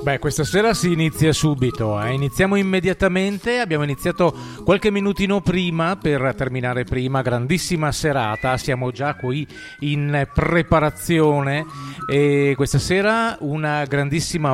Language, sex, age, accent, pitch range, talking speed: Italian, male, 40-59, native, 125-170 Hz, 120 wpm